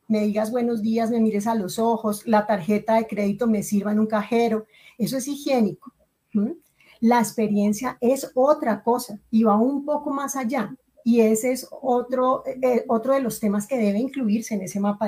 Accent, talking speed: Colombian, 185 wpm